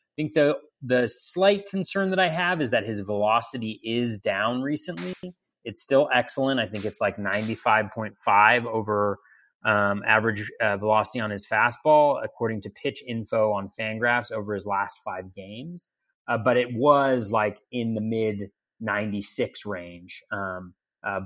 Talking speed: 150 wpm